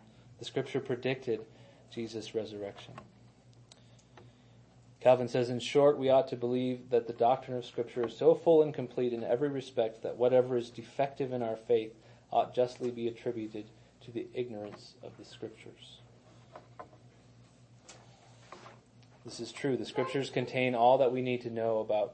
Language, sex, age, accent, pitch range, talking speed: English, male, 30-49, American, 115-125 Hz, 150 wpm